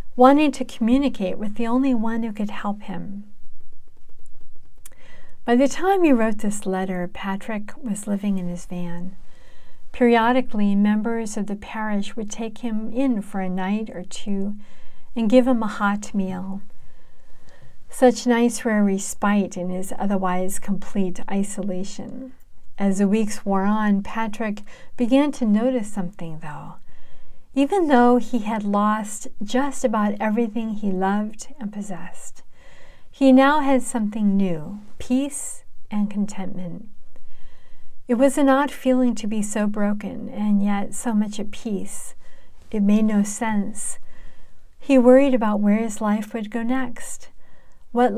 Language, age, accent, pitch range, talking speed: English, 50-69, American, 200-240 Hz, 140 wpm